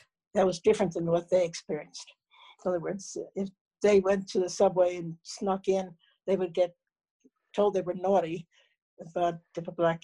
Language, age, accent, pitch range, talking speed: English, 60-79, American, 165-205 Hz, 180 wpm